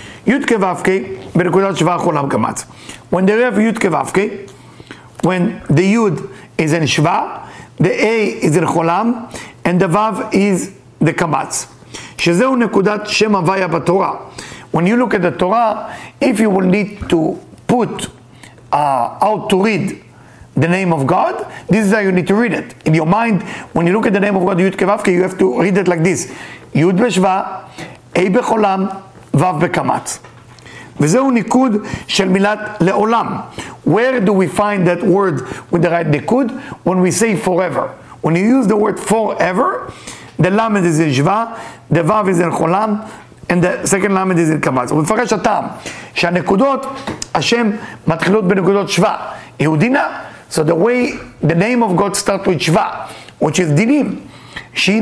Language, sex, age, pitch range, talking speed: English, male, 50-69, 175-215 Hz, 175 wpm